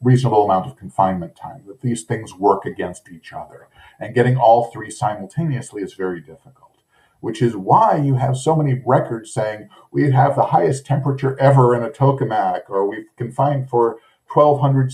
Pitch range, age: 110-135 Hz, 40-59